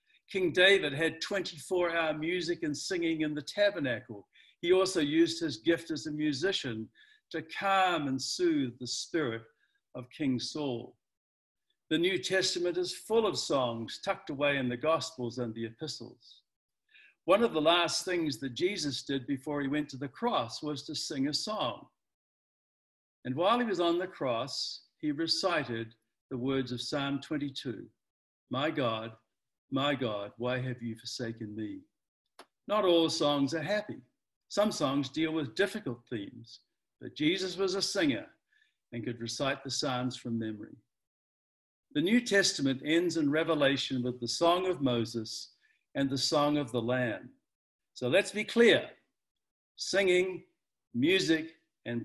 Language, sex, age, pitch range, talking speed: English, male, 60-79, 125-185 Hz, 150 wpm